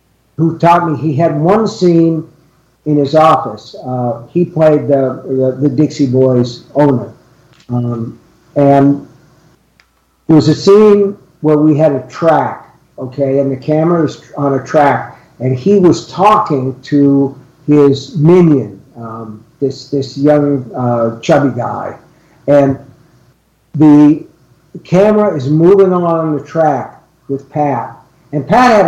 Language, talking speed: English, 135 wpm